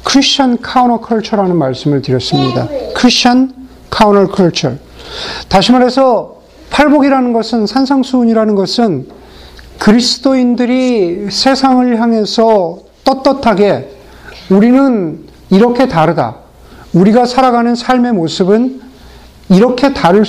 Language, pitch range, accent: Korean, 190-245 Hz, native